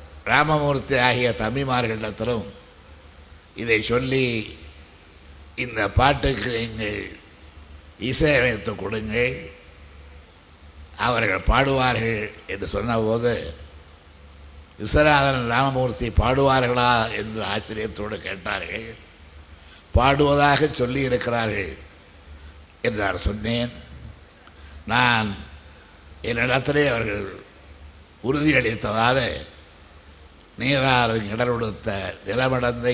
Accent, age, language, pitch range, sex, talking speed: native, 60-79, Tamil, 80-125 Hz, male, 60 wpm